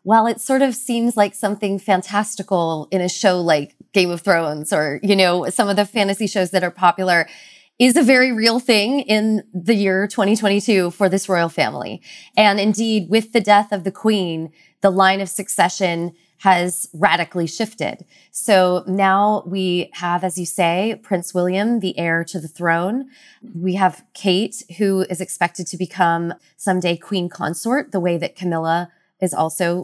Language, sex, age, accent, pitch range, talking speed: English, female, 20-39, American, 180-220 Hz, 170 wpm